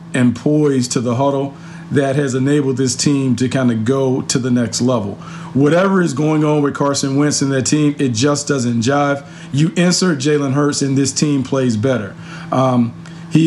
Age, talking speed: 40-59, 190 wpm